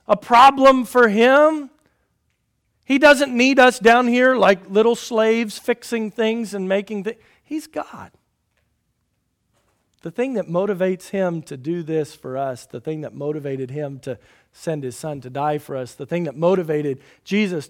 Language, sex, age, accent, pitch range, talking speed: English, male, 50-69, American, 155-235 Hz, 165 wpm